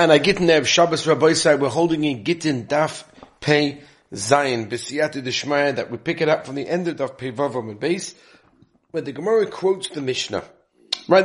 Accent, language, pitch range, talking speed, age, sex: British, English, 145-195 Hz, 195 wpm, 40-59, male